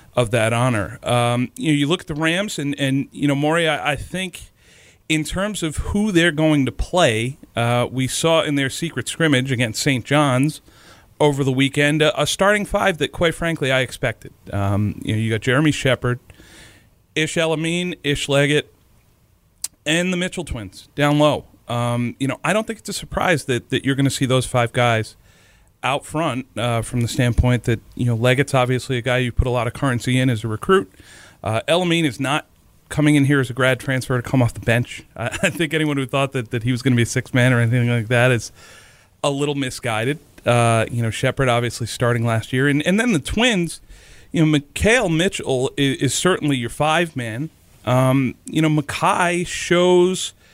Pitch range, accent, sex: 120-155 Hz, American, male